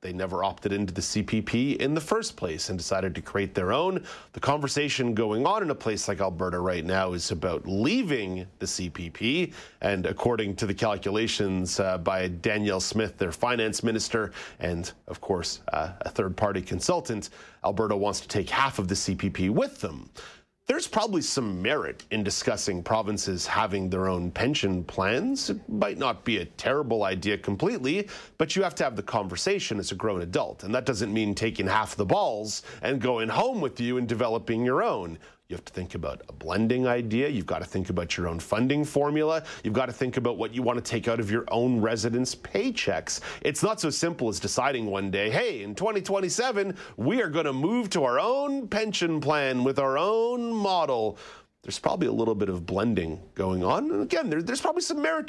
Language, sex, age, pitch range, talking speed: English, male, 30-49, 95-135 Hz, 195 wpm